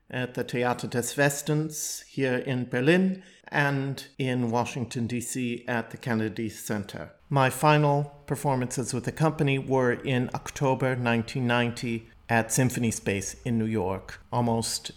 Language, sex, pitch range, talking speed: English, male, 115-135 Hz, 130 wpm